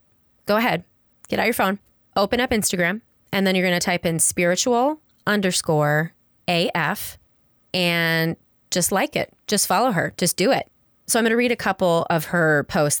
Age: 20-39